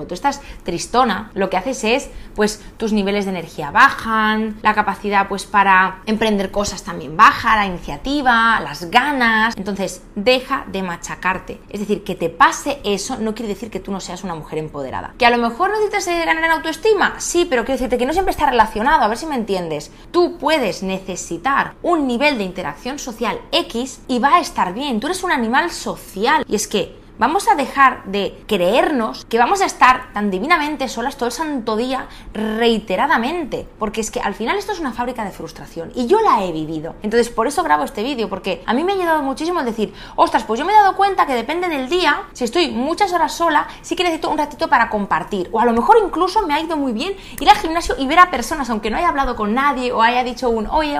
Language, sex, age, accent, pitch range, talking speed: Spanish, female, 20-39, Spanish, 205-310 Hz, 220 wpm